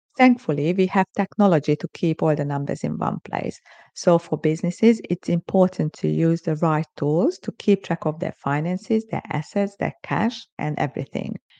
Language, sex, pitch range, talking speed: English, female, 155-190 Hz, 175 wpm